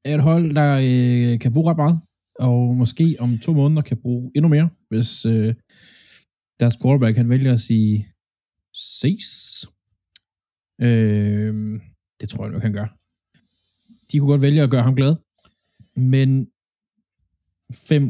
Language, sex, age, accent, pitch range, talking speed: Danish, male, 20-39, native, 110-130 Hz, 145 wpm